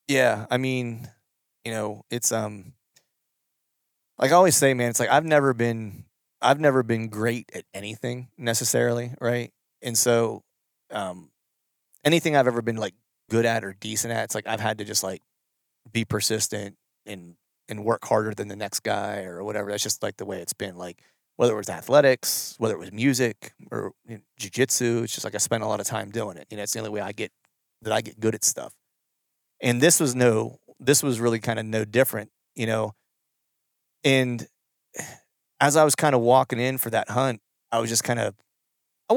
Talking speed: 200 wpm